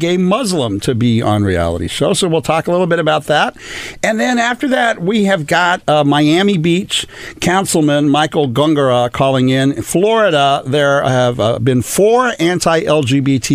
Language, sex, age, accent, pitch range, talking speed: English, male, 50-69, American, 120-155 Hz, 170 wpm